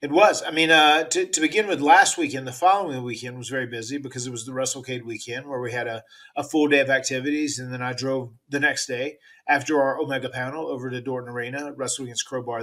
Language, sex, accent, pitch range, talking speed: English, male, American, 125-145 Hz, 240 wpm